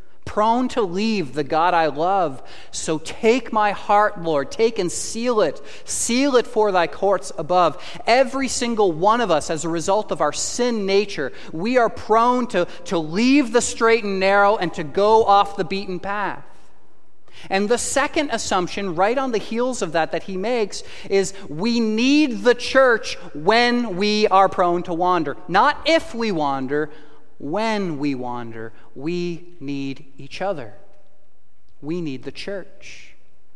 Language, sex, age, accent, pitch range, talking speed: English, male, 30-49, American, 150-215 Hz, 165 wpm